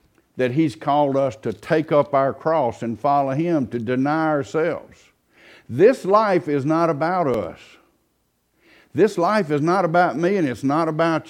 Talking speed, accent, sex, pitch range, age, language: 165 wpm, American, male, 130-180 Hz, 60-79, English